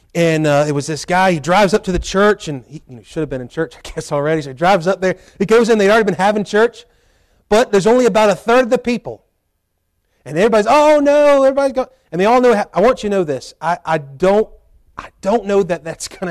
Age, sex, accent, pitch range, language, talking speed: 30-49, male, American, 155-215 Hz, English, 265 wpm